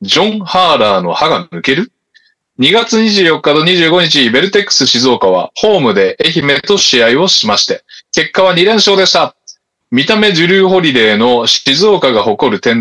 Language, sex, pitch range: Japanese, male, 145-195 Hz